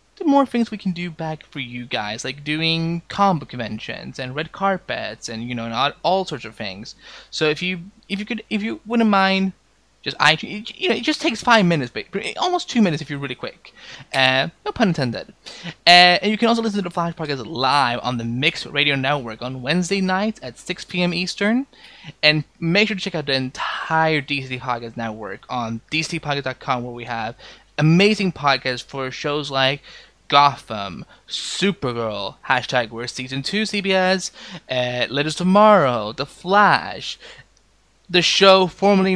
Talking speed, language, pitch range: 180 wpm, English, 130-195 Hz